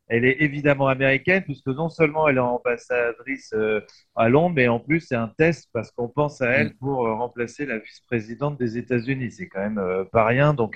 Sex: male